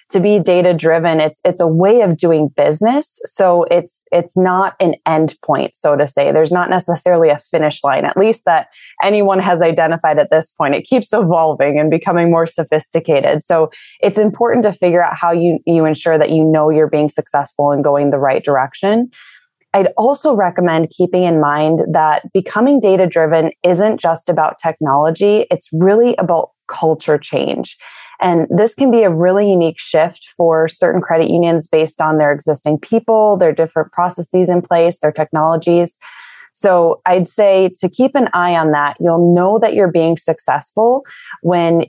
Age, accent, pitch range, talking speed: 20-39, American, 155-185 Hz, 175 wpm